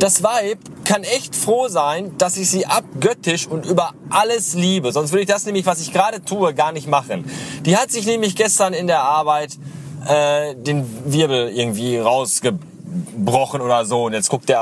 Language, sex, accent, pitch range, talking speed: German, male, German, 145-205 Hz, 185 wpm